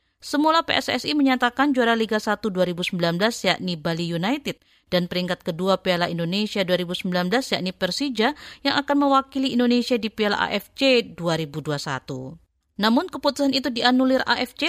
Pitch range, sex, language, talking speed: 180-245 Hz, female, Indonesian, 125 wpm